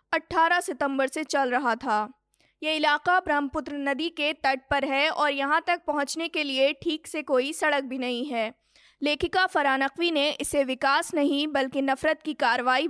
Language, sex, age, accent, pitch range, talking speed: Hindi, female, 20-39, native, 255-305 Hz, 170 wpm